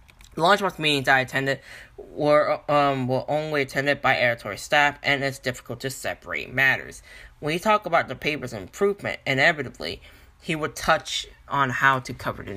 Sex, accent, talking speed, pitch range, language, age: male, American, 160 wpm, 125-155 Hz, English, 10-29